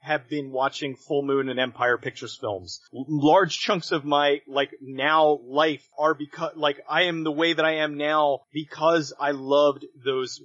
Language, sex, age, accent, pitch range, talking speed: English, male, 30-49, American, 125-150 Hz, 180 wpm